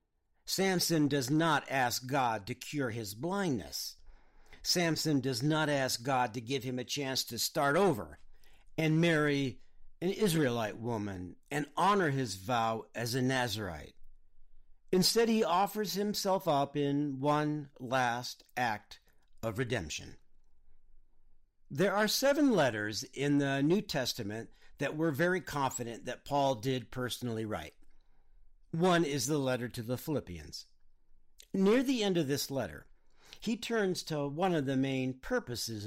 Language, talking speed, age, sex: English, 140 wpm, 50-69, male